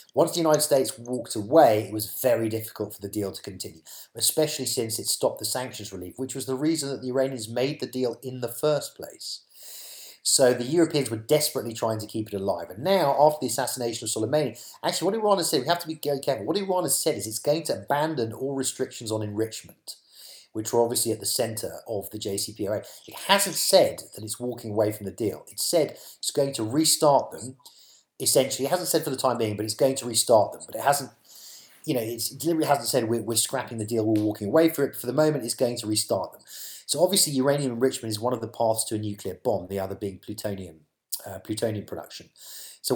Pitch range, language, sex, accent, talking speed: 110-140 Hz, English, male, British, 230 wpm